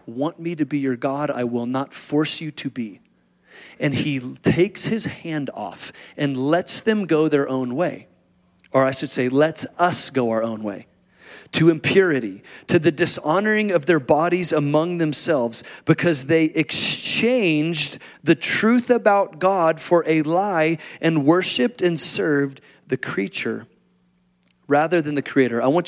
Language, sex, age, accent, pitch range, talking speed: English, male, 40-59, American, 135-180 Hz, 160 wpm